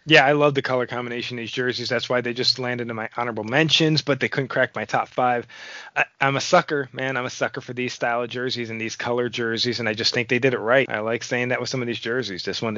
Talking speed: 275 wpm